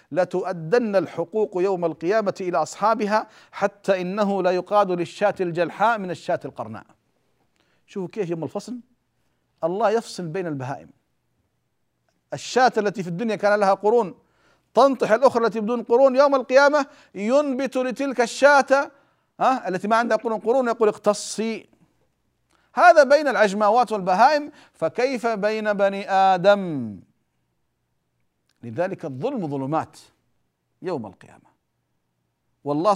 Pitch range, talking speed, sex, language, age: 150-225 Hz, 110 wpm, male, Arabic, 50-69